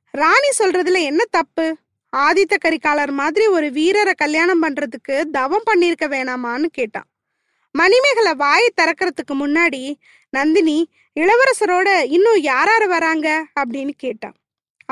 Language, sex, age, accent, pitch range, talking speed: Tamil, female, 20-39, native, 295-385 Hz, 105 wpm